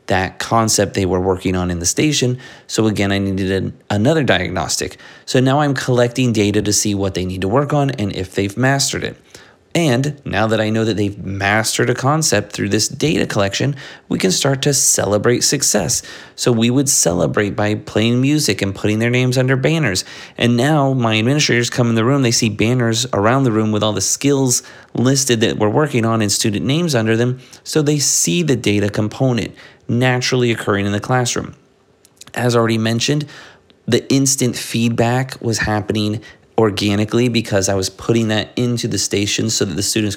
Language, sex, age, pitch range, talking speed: English, male, 30-49, 100-125 Hz, 190 wpm